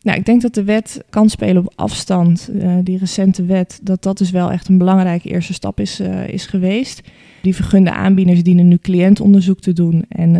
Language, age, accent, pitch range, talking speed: Dutch, 20-39, Dutch, 175-195 Hz, 210 wpm